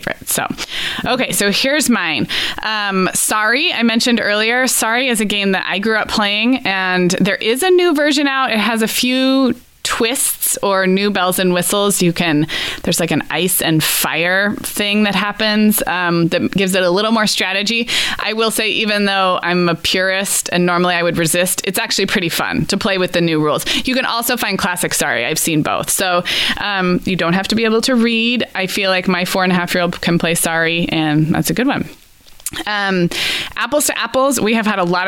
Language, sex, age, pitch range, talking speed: English, female, 20-39, 175-225 Hz, 210 wpm